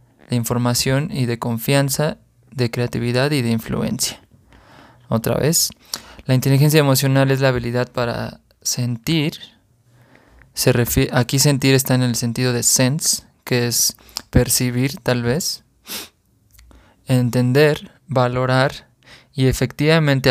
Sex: male